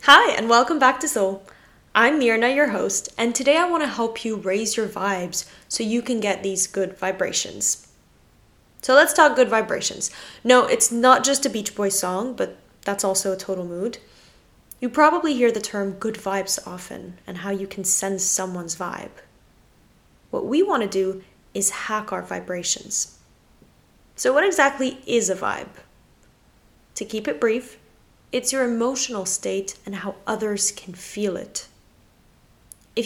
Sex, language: female, English